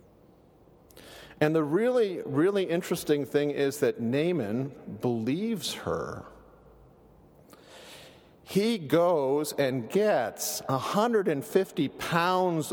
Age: 50-69